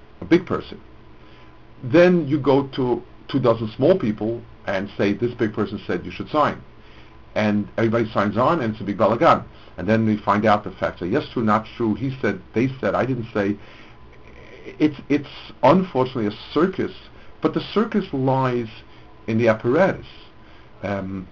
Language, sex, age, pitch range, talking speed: English, male, 50-69, 105-135 Hz, 170 wpm